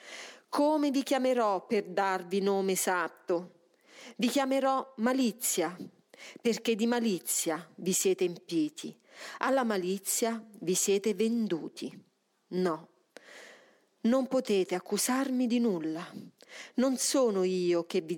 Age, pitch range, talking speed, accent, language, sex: 40-59, 185-255 Hz, 105 wpm, native, Italian, female